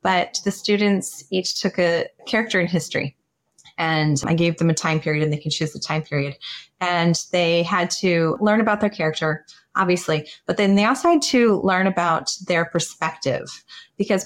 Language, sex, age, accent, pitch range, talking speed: English, female, 30-49, American, 155-190 Hz, 180 wpm